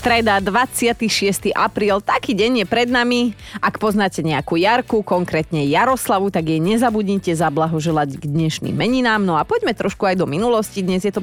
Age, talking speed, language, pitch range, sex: 30-49, 165 wpm, Slovak, 165-220 Hz, female